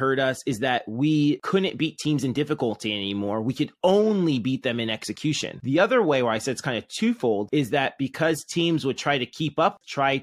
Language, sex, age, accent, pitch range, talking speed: English, male, 30-49, American, 120-150 Hz, 225 wpm